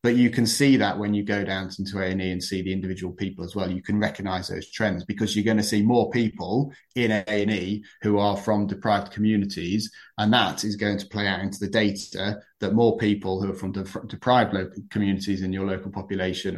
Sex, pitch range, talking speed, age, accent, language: male, 100-110 Hz, 220 wpm, 30-49, British, English